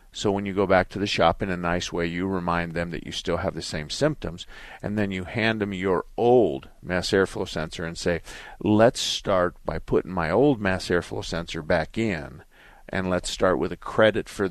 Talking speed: 215 wpm